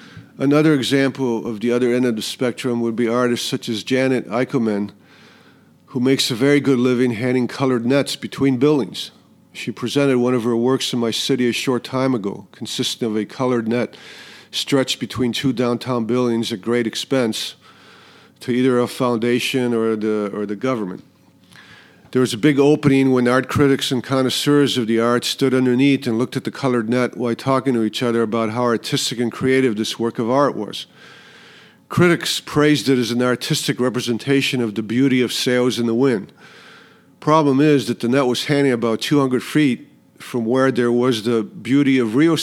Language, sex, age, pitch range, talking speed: English, male, 50-69, 120-140 Hz, 185 wpm